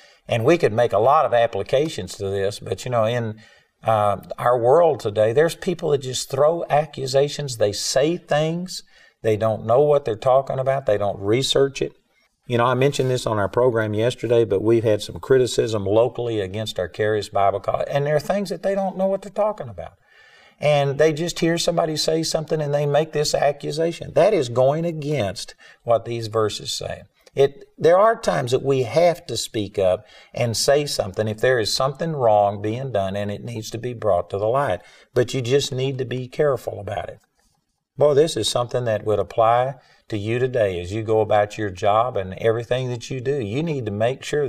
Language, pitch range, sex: English, 105-145 Hz, male